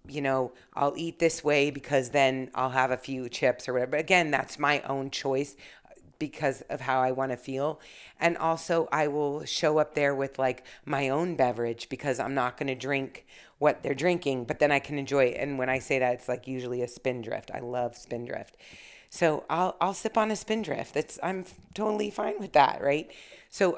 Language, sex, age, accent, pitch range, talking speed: English, female, 30-49, American, 130-155 Hz, 205 wpm